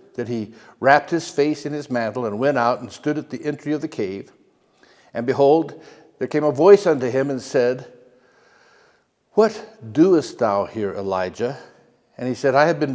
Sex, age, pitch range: male, 60-79, 120-155 Hz